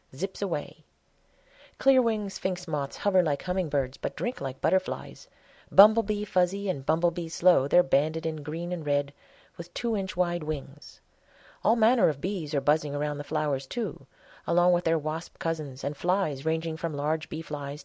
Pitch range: 145-185 Hz